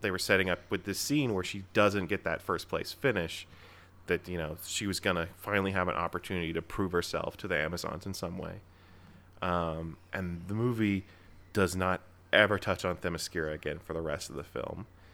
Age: 30-49